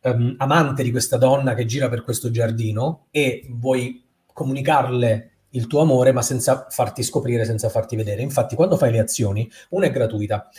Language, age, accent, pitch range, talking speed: Italian, 30-49, native, 115-140 Hz, 170 wpm